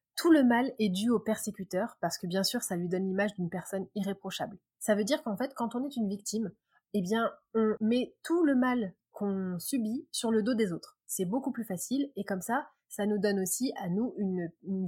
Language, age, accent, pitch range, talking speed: French, 20-39, French, 185-230 Hz, 230 wpm